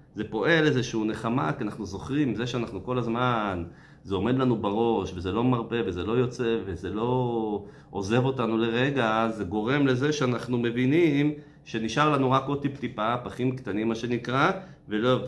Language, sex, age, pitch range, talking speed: Hebrew, male, 30-49, 100-135 Hz, 155 wpm